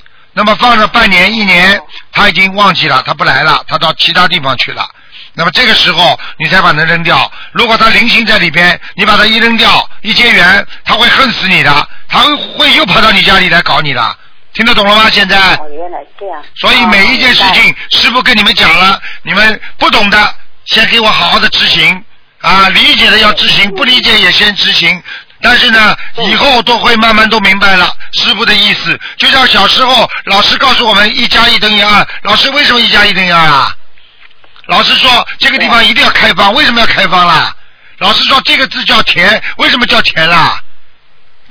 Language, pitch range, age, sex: Chinese, 195-240 Hz, 50-69, male